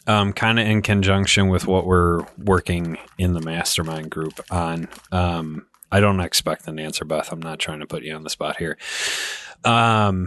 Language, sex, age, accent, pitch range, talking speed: English, male, 30-49, American, 90-125 Hz, 180 wpm